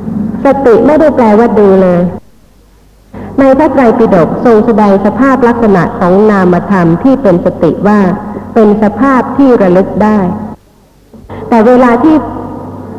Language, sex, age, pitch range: Thai, female, 50-69, 190-240 Hz